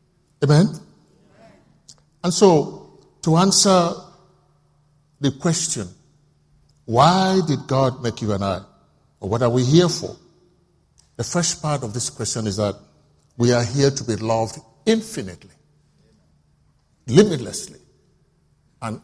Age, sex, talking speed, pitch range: 50-69, male, 115 wpm, 125-170 Hz